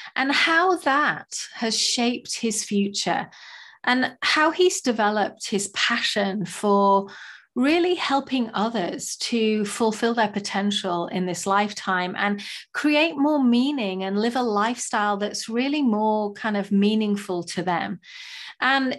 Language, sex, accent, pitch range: English, female, British, 195-245 Hz